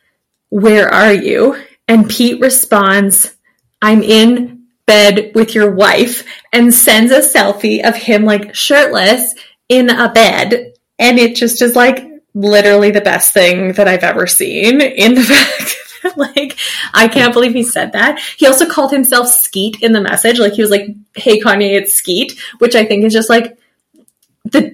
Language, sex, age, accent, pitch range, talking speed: English, female, 20-39, American, 190-240 Hz, 170 wpm